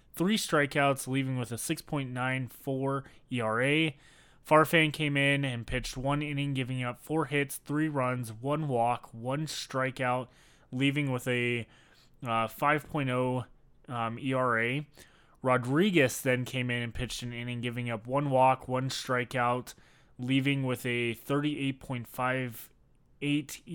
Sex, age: male, 20-39